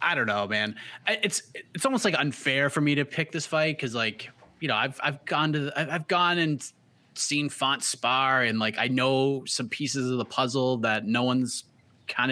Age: 20-39